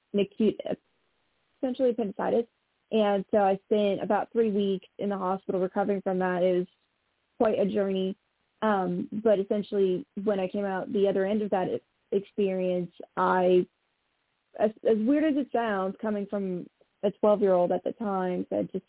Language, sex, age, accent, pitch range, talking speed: English, female, 20-39, American, 185-215 Hz, 170 wpm